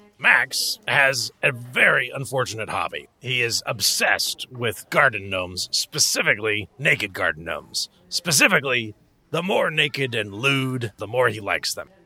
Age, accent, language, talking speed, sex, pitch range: 40-59, American, English, 135 wpm, male, 105-140 Hz